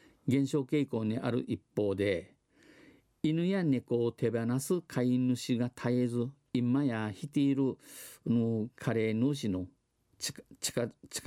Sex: male